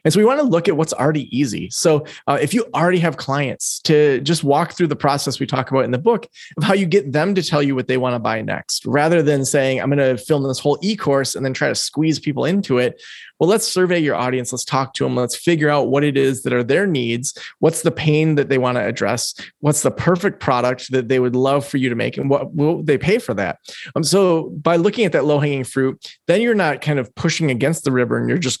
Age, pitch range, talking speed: 30-49, 130-165 Hz, 270 wpm